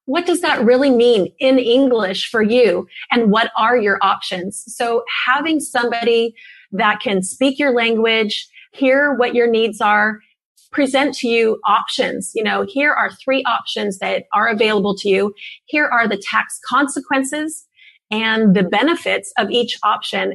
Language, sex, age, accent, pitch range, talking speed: English, female, 30-49, American, 205-250 Hz, 155 wpm